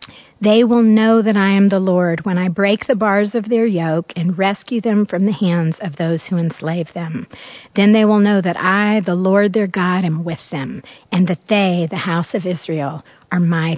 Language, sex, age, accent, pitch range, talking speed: English, female, 50-69, American, 180-220 Hz, 215 wpm